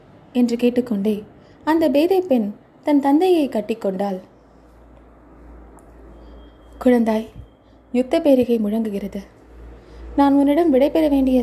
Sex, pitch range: female, 215-295 Hz